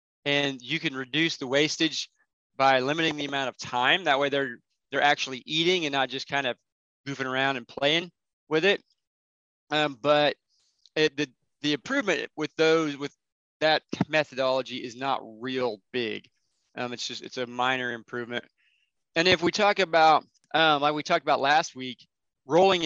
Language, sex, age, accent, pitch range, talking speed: English, male, 20-39, American, 130-150 Hz, 170 wpm